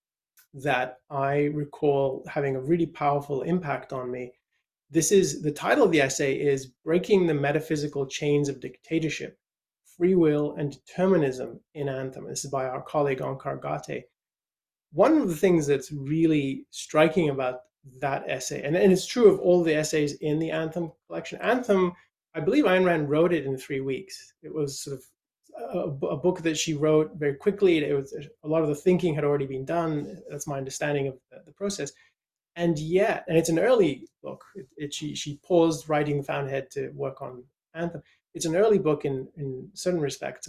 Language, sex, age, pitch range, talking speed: English, male, 30-49, 140-170 Hz, 185 wpm